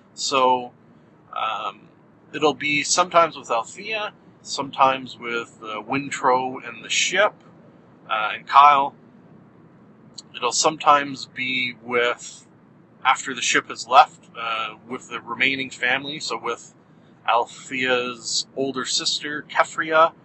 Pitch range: 125-150 Hz